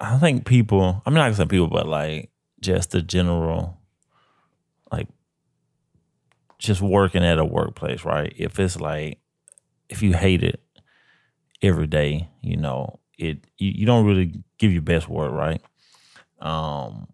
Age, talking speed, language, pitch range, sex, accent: 30-49, 145 wpm, English, 80-95 Hz, male, American